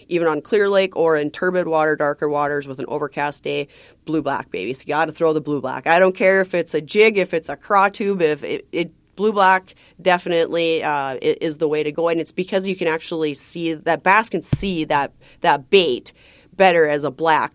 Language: English